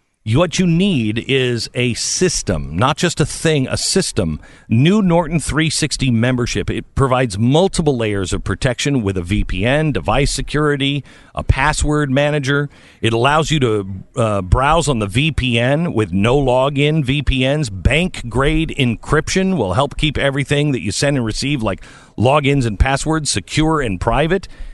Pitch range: 115-155 Hz